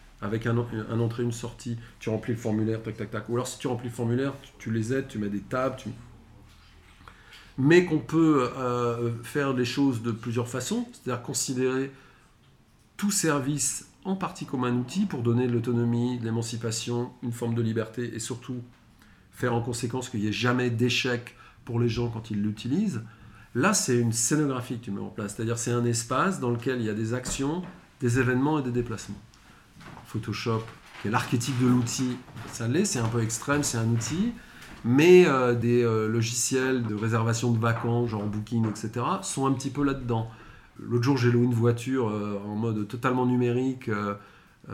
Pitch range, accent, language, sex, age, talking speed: 110-130 Hz, French, French, male, 40-59, 195 wpm